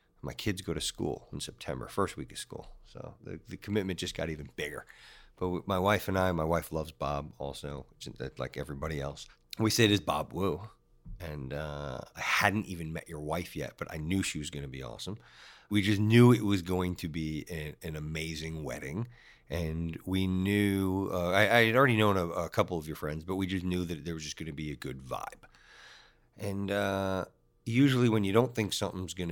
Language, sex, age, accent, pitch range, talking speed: English, male, 40-59, American, 80-105 Hz, 215 wpm